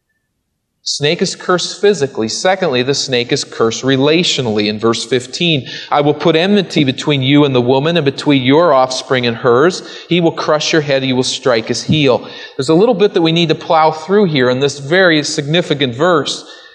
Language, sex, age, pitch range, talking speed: English, male, 40-59, 145-190 Hz, 195 wpm